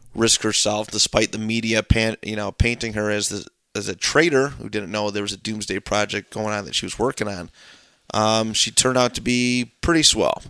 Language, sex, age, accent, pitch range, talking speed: English, male, 30-49, American, 105-125 Hz, 215 wpm